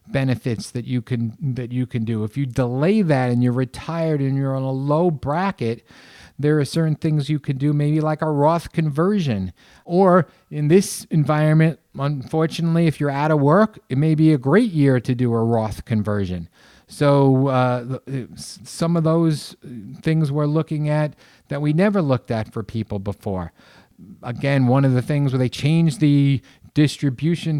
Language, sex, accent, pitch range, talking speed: English, male, American, 125-155 Hz, 175 wpm